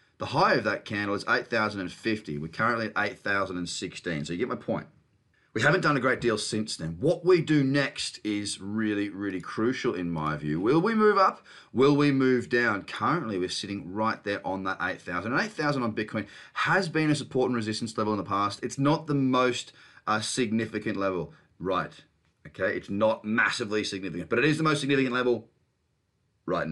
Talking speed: 195 wpm